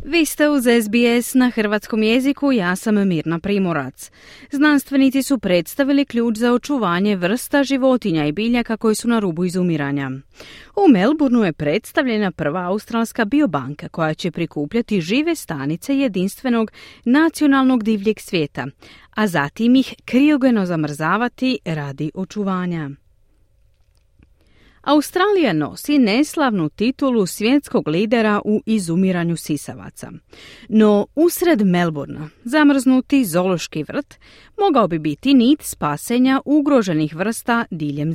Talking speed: 115 wpm